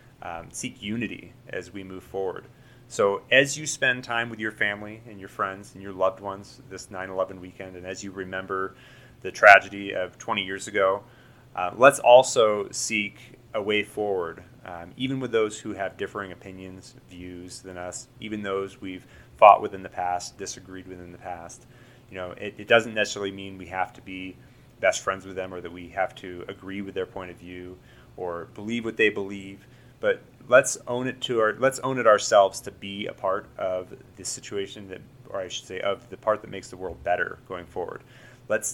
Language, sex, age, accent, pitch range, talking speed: English, male, 30-49, American, 95-115 Hz, 200 wpm